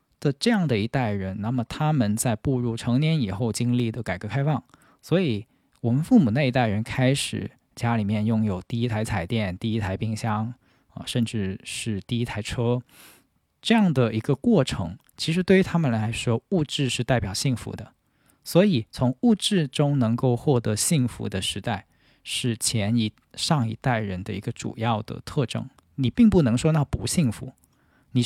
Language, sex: Chinese, male